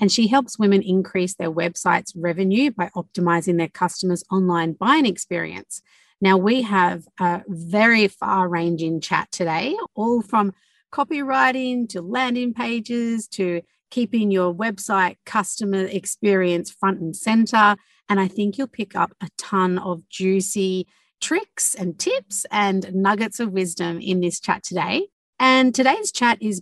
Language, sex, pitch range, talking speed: English, female, 180-225 Hz, 140 wpm